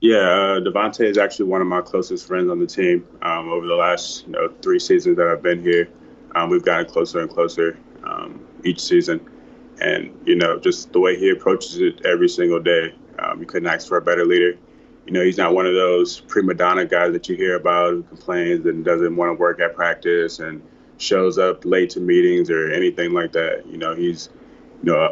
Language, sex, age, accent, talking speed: English, male, 20-39, American, 220 wpm